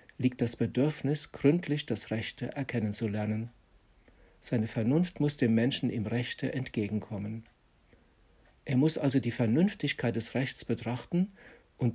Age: 60-79